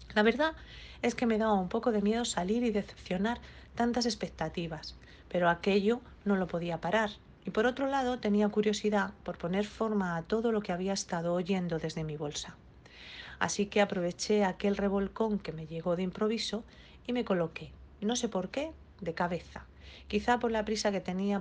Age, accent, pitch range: 40-59, Spanish, 175-215 Hz